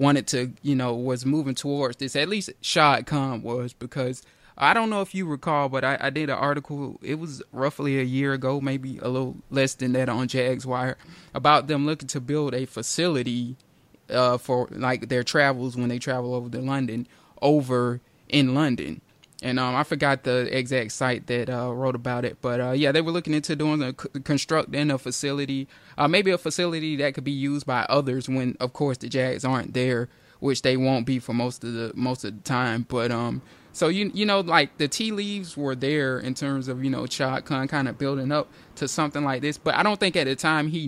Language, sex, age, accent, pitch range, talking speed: English, male, 20-39, American, 125-150 Hz, 220 wpm